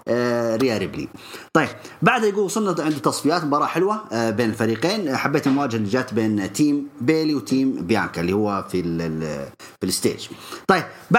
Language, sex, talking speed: English, male, 140 wpm